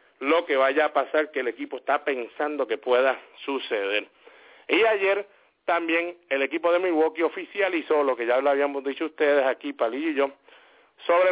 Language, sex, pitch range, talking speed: English, male, 130-180 Hz, 175 wpm